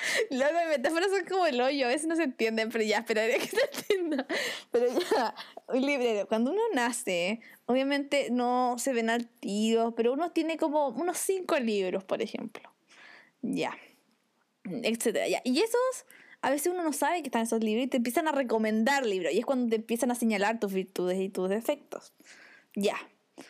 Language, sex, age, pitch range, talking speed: Spanish, female, 10-29, 230-320 Hz, 180 wpm